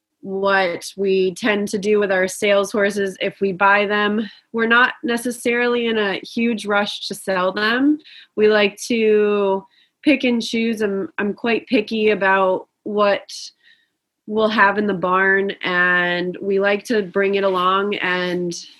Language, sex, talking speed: English, female, 155 wpm